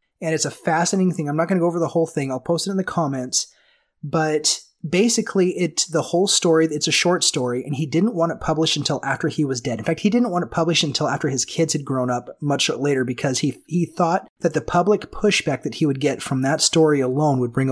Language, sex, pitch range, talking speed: English, male, 135-170 Hz, 255 wpm